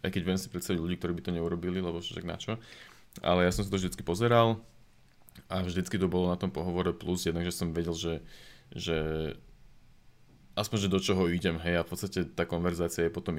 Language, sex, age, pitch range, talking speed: Slovak, male, 20-39, 85-100 Hz, 215 wpm